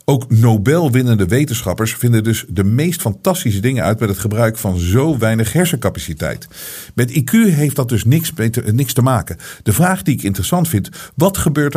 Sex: male